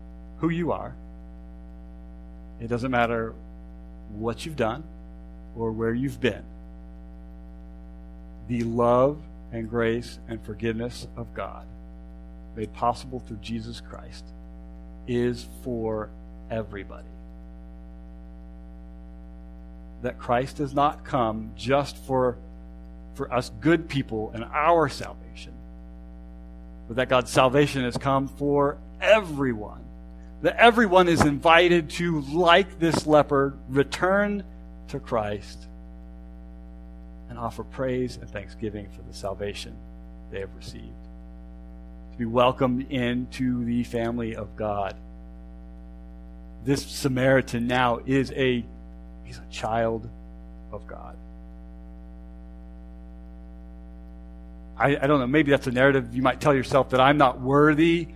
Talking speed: 110 wpm